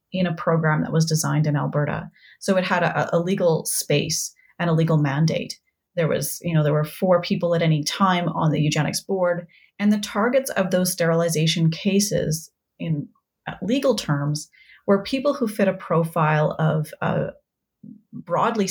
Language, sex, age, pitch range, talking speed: English, female, 30-49, 160-195 Hz, 170 wpm